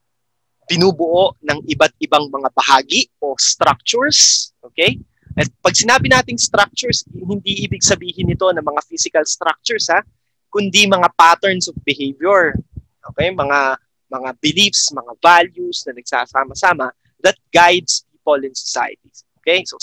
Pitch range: 130-185 Hz